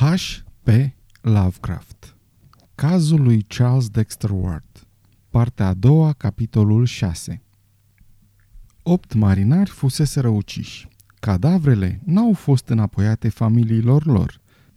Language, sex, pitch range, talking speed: Romanian, male, 100-140 Hz, 90 wpm